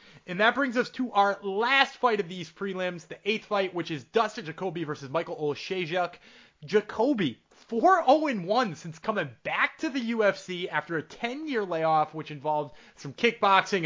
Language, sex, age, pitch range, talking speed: English, male, 30-49, 165-225 Hz, 160 wpm